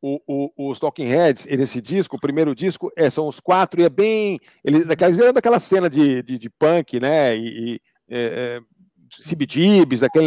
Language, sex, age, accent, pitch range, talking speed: Portuguese, male, 50-69, Brazilian, 140-190 Hz, 185 wpm